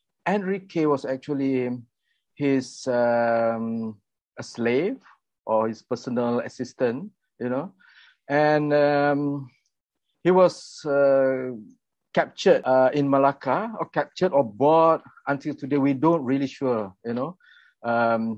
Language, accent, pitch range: English, Malaysian, 115-145 Hz